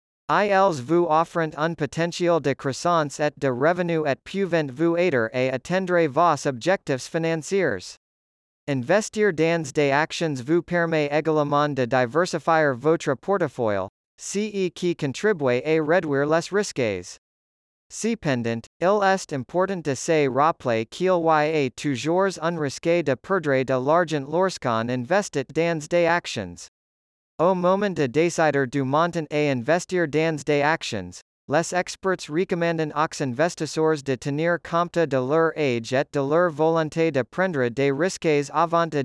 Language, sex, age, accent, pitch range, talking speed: English, male, 40-59, American, 140-175 Hz, 140 wpm